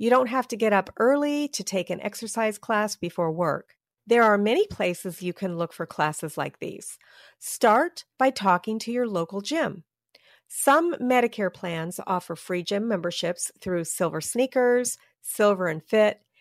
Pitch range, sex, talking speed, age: 185-245 Hz, female, 160 wpm, 40-59